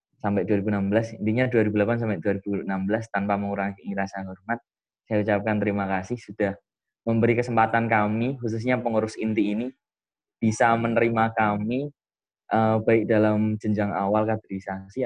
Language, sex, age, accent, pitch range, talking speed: Indonesian, male, 20-39, native, 100-115 Hz, 125 wpm